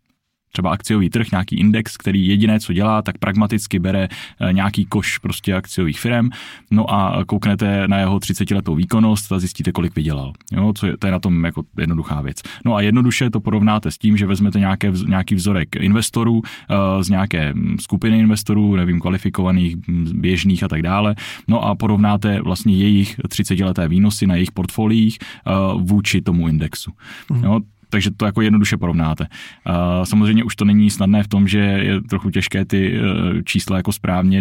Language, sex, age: Czech, male, 20-39